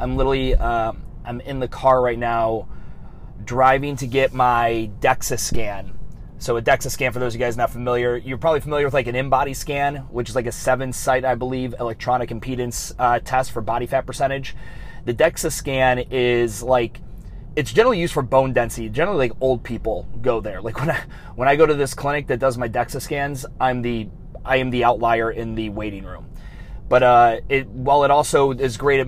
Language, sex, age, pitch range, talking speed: English, male, 30-49, 120-135 Hz, 205 wpm